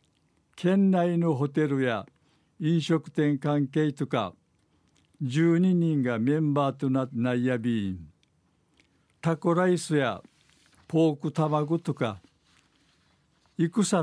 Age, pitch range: 60-79, 130-160 Hz